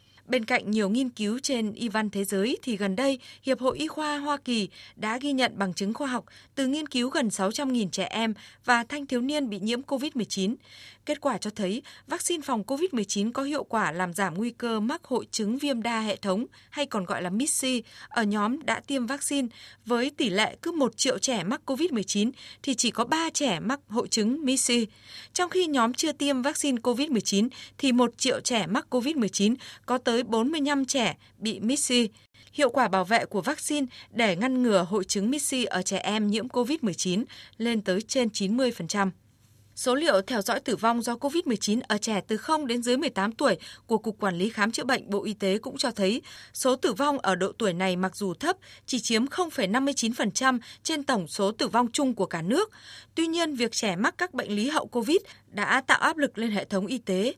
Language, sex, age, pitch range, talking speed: Vietnamese, female, 20-39, 210-275 Hz, 210 wpm